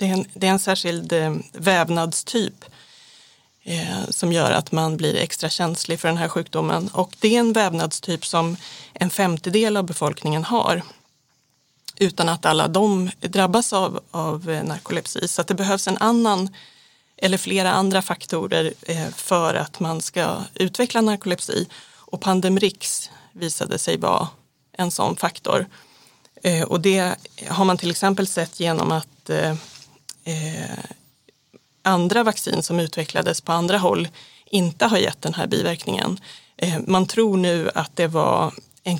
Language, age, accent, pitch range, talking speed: Swedish, 30-49, native, 165-195 Hz, 140 wpm